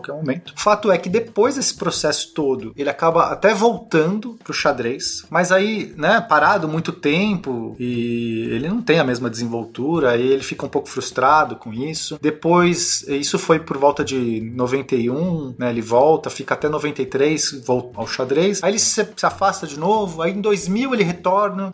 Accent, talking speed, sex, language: Brazilian, 175 wpm, male, Portuguese